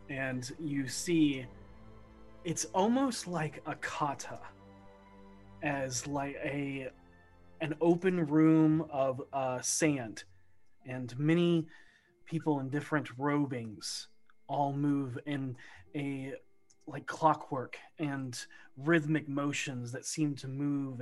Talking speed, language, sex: 105 wpm, English, male